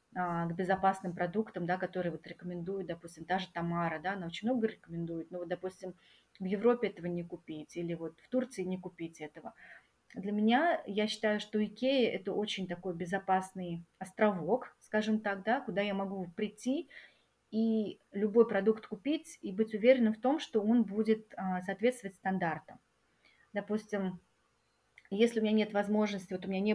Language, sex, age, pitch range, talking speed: Russian, female, 30-49, 180-215 Hz, 165 wpm